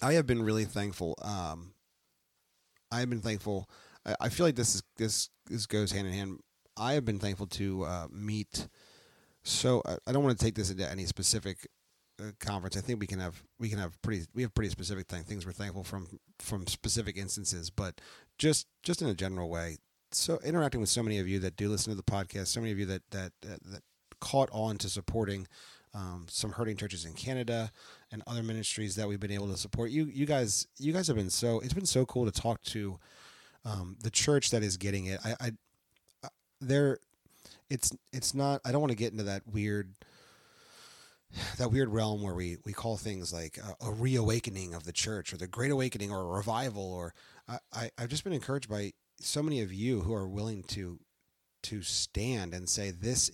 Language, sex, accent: English, male, American